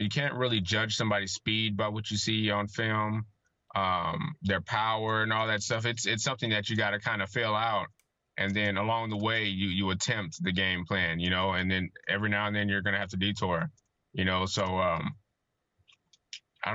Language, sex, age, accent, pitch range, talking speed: English, male, 20-39, American, 95-110 Hz, 215 wpm